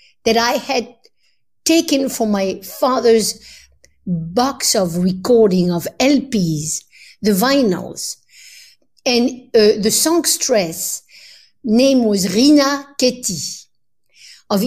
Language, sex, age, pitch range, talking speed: English, female, 60-79, 190-265 Hz, 95 wpm